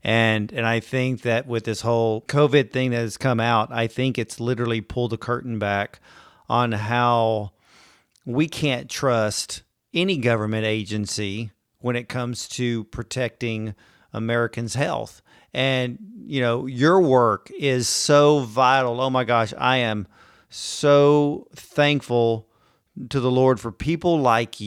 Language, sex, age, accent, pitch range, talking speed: English, male, 40-59, American, 115-135 Hz, 140 wpm